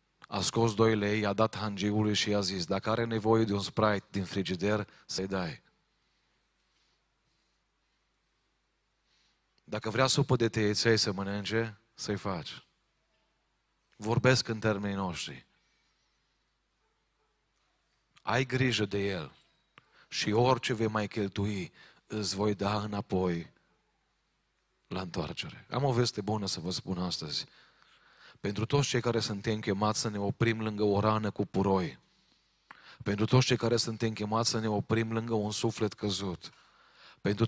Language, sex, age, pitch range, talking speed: Romanian, male, 40-59, 105-115 Hz, 135 wpm